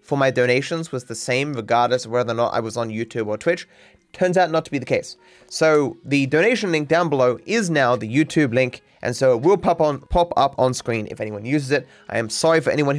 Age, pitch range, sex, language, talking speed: 20-39, 115-150 Hz, male, English, 250 wpm